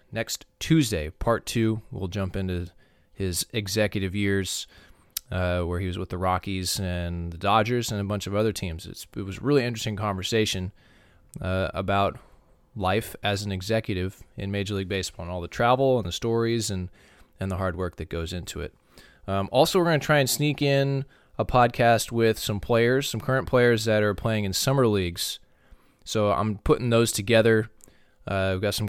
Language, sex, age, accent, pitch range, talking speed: English, male, 20-39, American, 90-110 Hz, 190 wpm